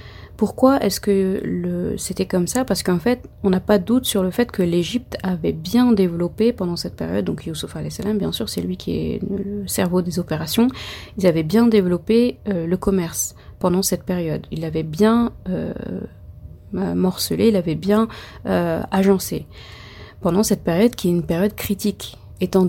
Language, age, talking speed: French, 30-49, 180 wpm